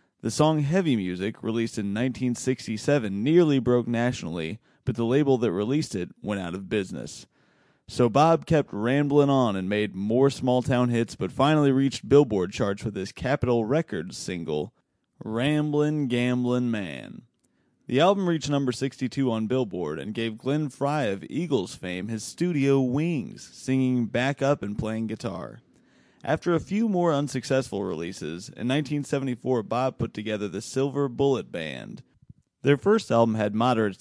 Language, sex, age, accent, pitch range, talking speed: English, male, 30-49, American, 110-140 Hz, 150 wpm